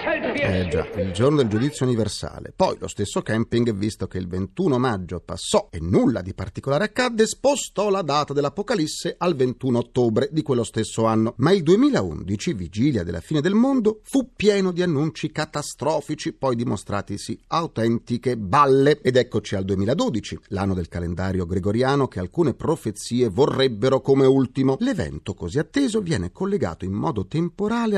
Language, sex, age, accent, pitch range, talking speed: Italian, male, 40-59, native, 110-185 Hz, 155 wpm